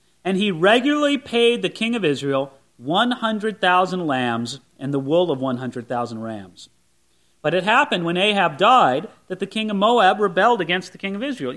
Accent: American